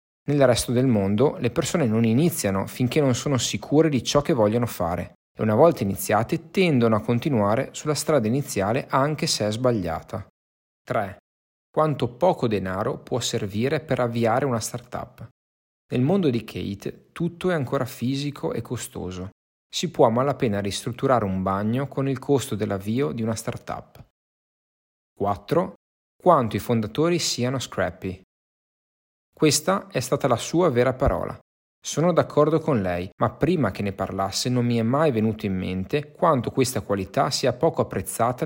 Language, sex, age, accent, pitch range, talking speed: Italian, male, 30-49, native, 100-140 Hz, 155 wpm